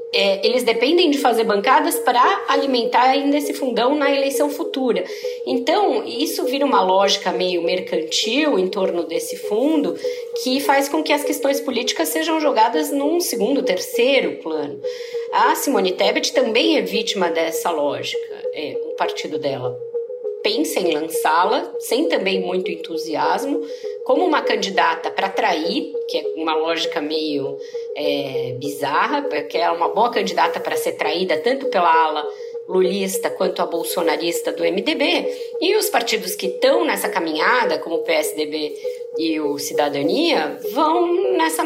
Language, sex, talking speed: Portuguese, female, 145 wpm